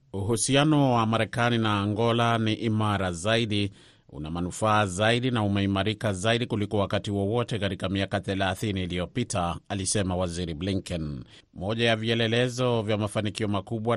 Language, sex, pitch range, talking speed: Swahili, male, 95-115 Hz, 130 wpm